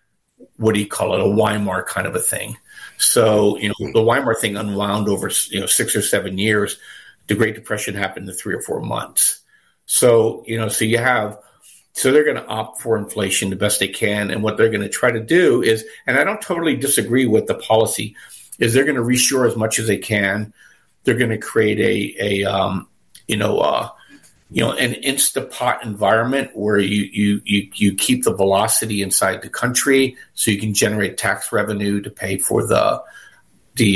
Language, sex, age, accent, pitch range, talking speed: English, male, 50-69, American, 105-125 Hz, 205 wpm